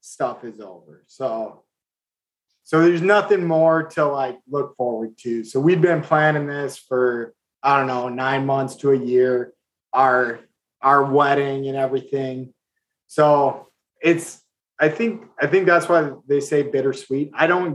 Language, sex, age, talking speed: English, male, 30-49, 150 wpm